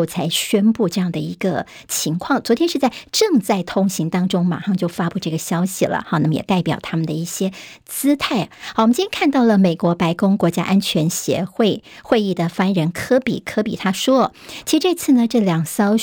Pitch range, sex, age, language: 170-225 Hz, male, 50-69, Chinese